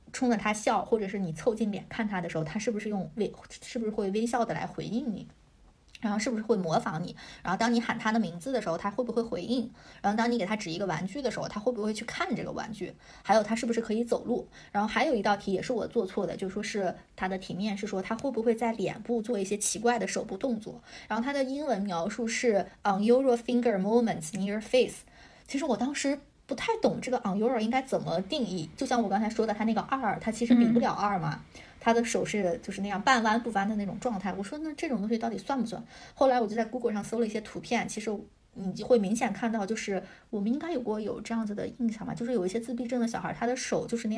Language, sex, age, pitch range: Chinese, female, 20-39, 195-240 Hz